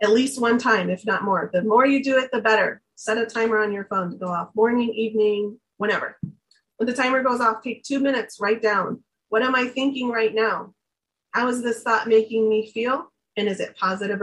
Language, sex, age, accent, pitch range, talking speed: English, female, 30-49, American, 205-255 Hz, 225 wpm